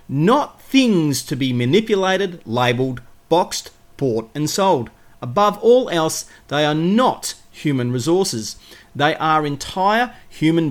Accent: Australian